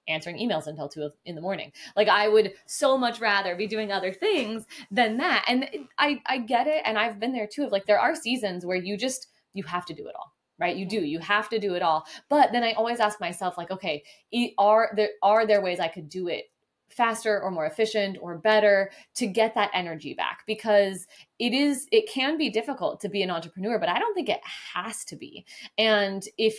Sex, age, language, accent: female, 20-39, English, American